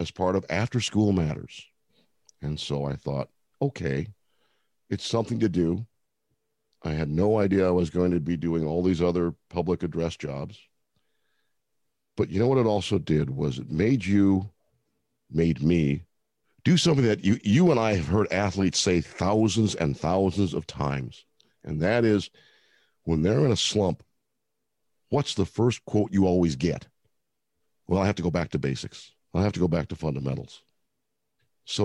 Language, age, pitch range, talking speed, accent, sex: English, 50-69, 85-105 Hz, 170 wpm, American, male